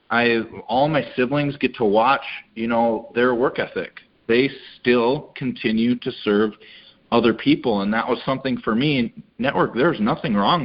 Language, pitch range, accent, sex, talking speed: English, 110-130 Hz, American, male, 165 wpm